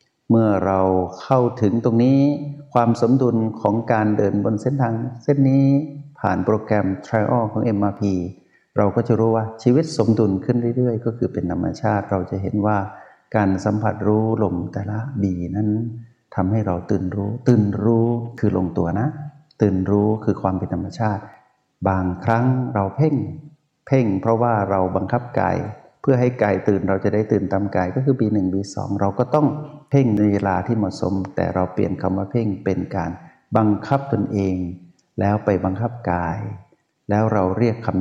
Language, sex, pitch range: Thai, male, 95-120 Hz